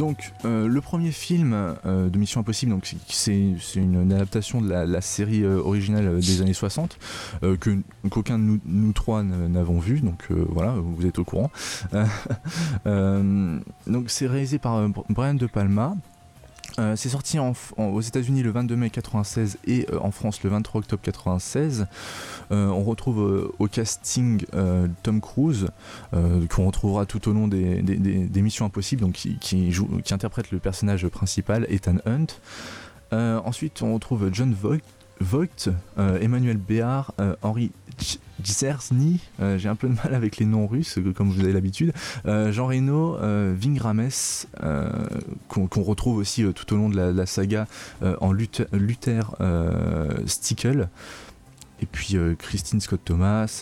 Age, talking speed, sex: 20-39, 175 wpm, male